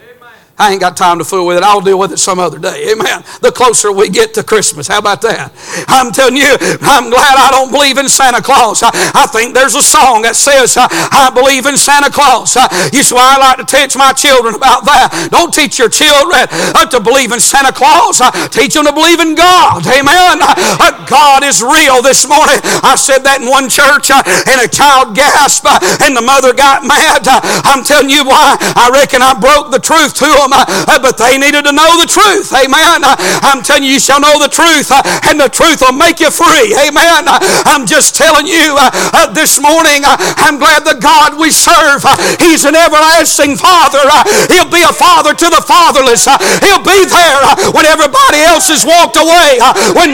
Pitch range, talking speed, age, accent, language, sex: 265-335 Hz, 195 wpm, 60-79, American, English, male